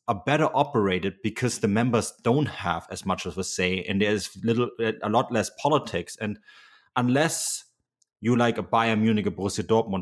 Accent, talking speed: German, 185 wpm